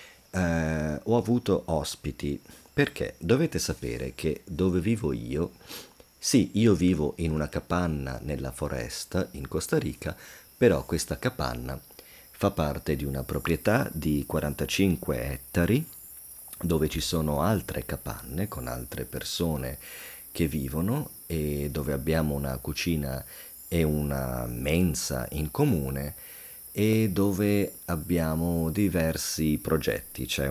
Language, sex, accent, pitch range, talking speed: English, male, Italian, 70-90 Hz, 115 wpm